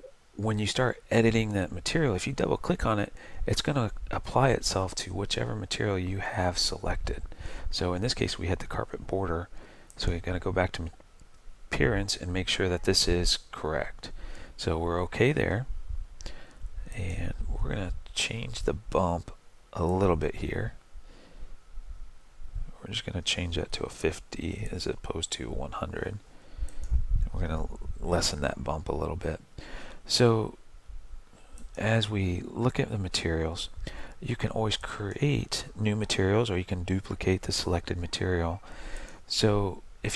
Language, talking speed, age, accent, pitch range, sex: English, 160 wpm, 40-59, American, 85-105 Hz, male